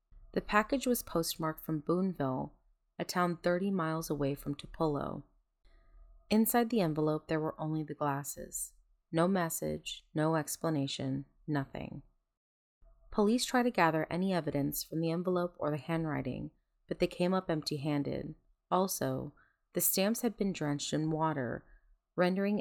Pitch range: 145-180 Hz